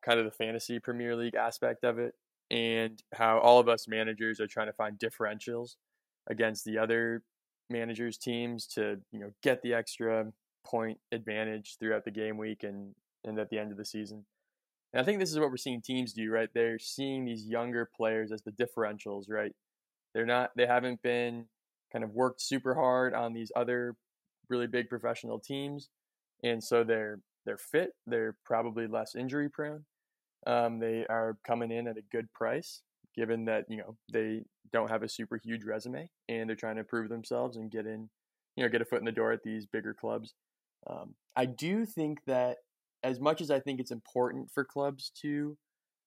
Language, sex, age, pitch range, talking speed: English, male, 20-39, 110-125 Hz, 195 wpm